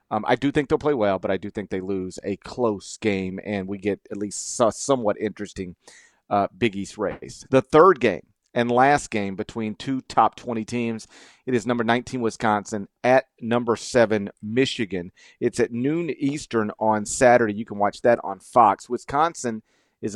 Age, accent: 40-59, American